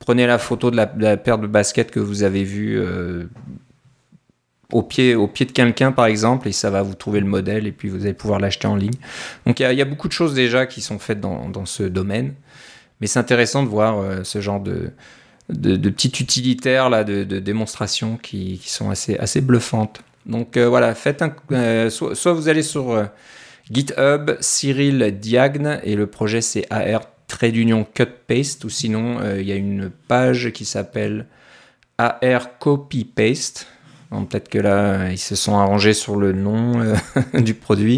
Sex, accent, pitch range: male, French, 105-130 Hz